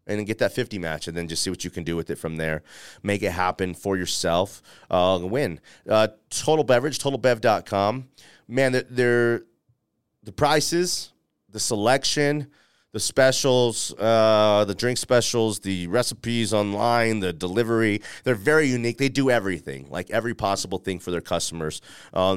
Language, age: English, 30-49